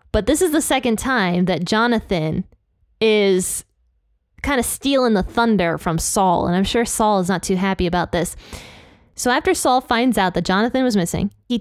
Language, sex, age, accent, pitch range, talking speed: English, female, 20-39, American, 185-245 Hz, 185 wpm